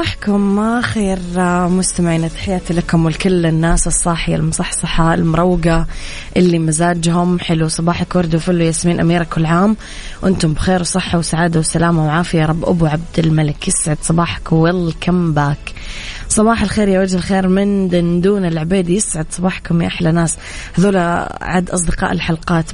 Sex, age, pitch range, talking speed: female, 20-39, 155-180 Hz, 135 wpm